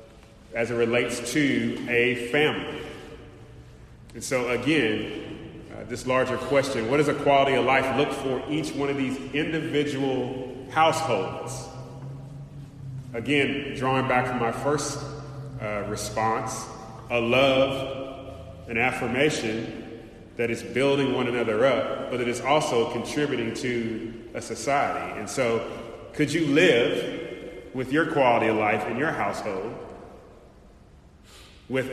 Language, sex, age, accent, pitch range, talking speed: English, male, 30-49, American, 110-130 Hz, 125 wpm